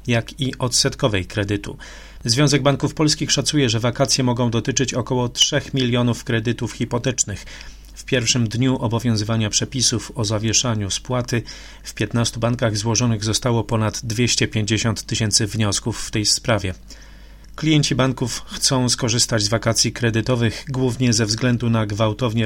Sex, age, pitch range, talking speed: male, 30-49, 110-125 Hz, 130 wpm